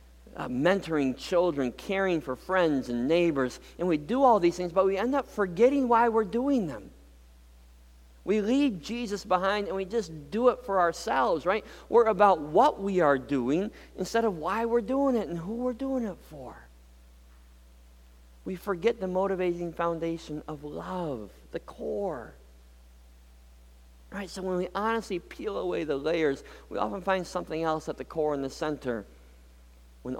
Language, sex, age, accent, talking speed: English, male, 40-59, American, 165 wpm